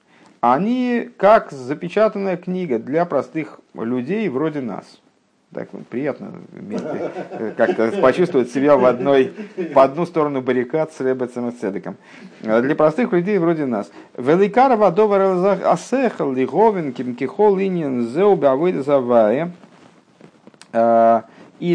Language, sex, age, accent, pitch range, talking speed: Russian, male, 50-69, native, 115-165 Hz, 100 wpm